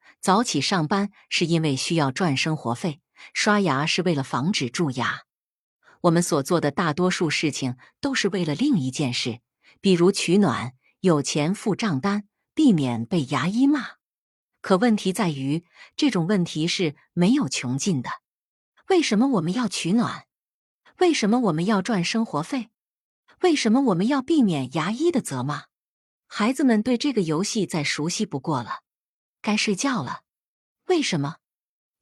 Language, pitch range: Chinese, 145-225 Hz